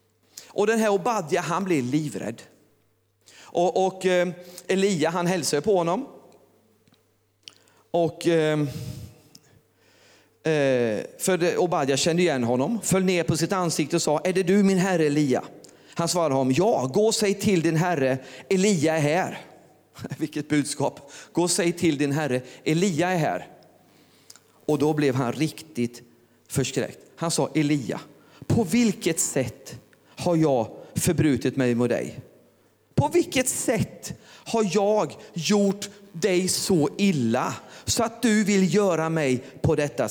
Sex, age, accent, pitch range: male, 40-59, native, 135-200 Hz